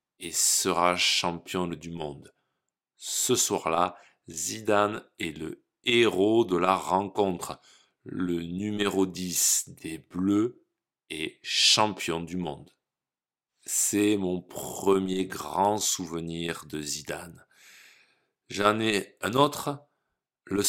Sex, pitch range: male, 85-105 Hz